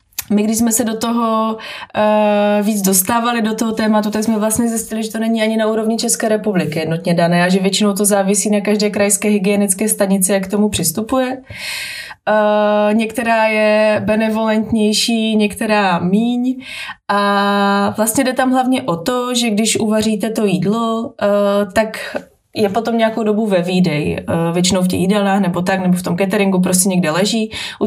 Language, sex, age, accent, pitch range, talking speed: Czech, female, 20-39, native, 195-220 Hz, 170 wpm